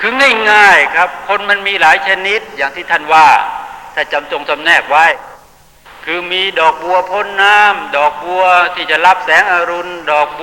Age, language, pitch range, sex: 60-79, Thai, 155-210 Hz, male